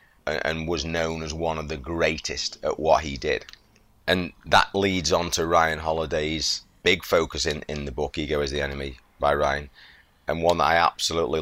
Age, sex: 30-49, male